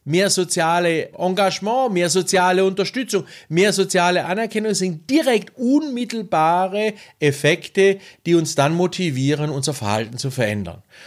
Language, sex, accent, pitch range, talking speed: German, male, German, 135-185 Hz, 115 wpm